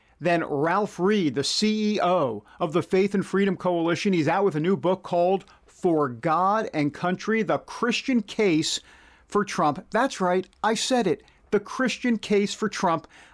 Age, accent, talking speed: 50-69, American, 165 wpm